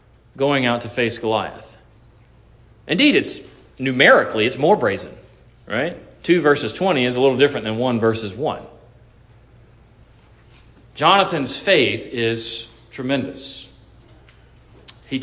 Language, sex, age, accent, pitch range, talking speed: English, male, 40-59, American, 120-175 Hz, 110 wpm